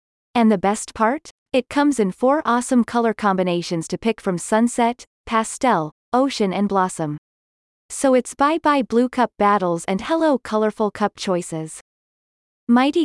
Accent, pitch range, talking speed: American, 185-240 Hz, 145 wpm